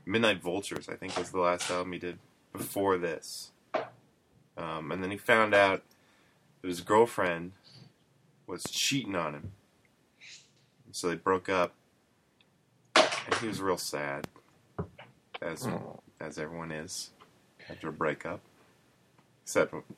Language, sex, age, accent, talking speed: English, male, 20-39, American, 125 wpm